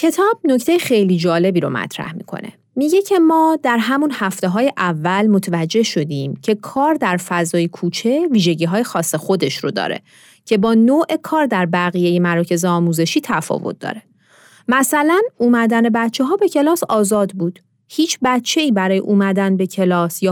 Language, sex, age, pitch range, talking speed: Persian, female, 30-49, 180-270 Hz, 155 wpm